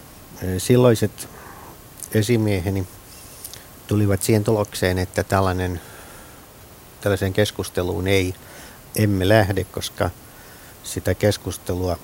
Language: Finnish